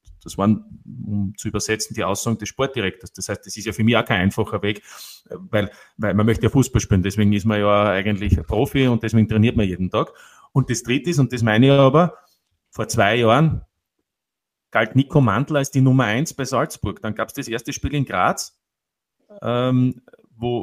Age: 30-49